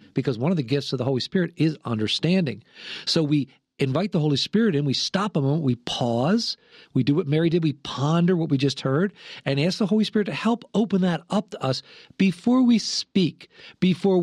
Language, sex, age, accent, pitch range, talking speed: English, male, 50-69, American, 135-200 Hz, 215 wpm